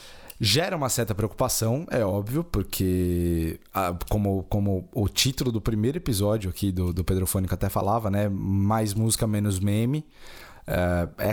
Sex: male